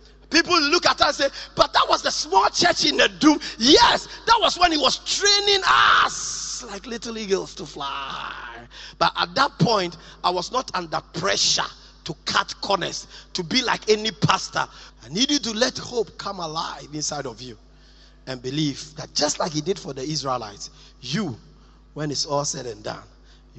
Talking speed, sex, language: 185 wpm, male, English